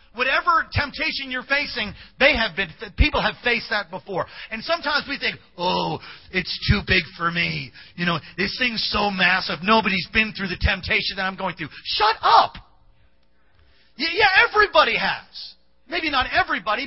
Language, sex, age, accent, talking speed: English, male, 40-59, American, 160 wpm